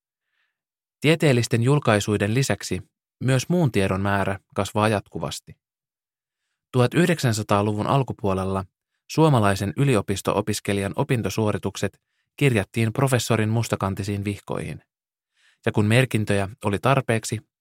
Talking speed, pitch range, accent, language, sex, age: 80 wpm, 100-125 Hz, native, Finnish, male, 20-39